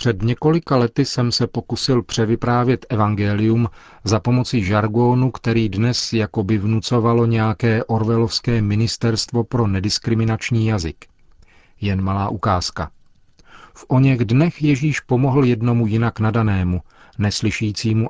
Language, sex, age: Czech, male, 40-59